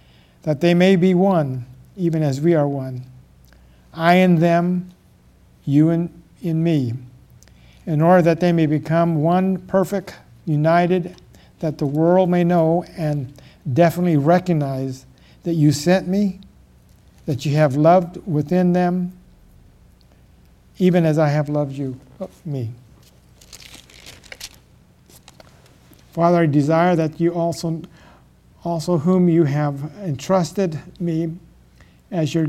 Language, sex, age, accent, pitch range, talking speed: English, male, 60-79, American, 130-175 Hz, 120 wpm